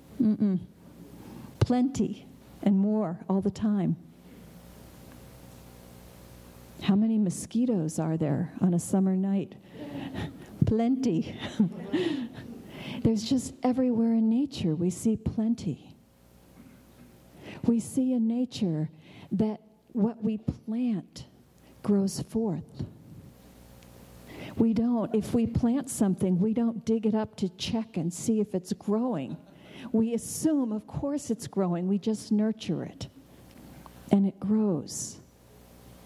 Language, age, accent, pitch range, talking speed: English, 50-69, American, 160-225 Hz, 110 wpm